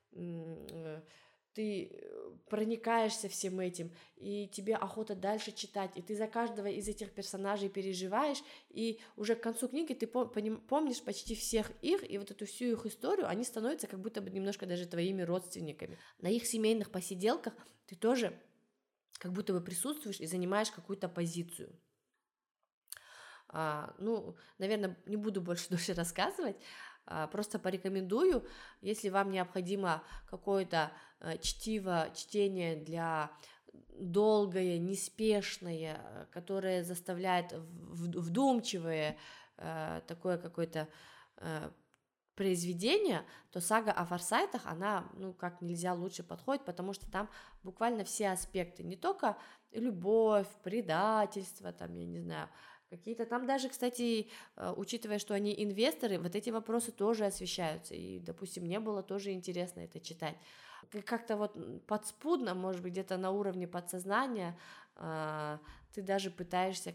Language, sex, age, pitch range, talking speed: Russian, female, 20-39, 180-220 Hz, 120 wpm